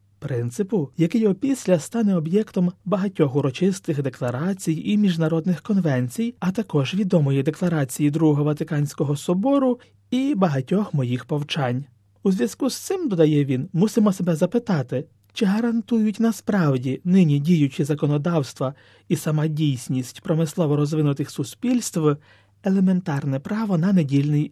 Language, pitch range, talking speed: Ukrainian, 140-195 Hz, 115 wpm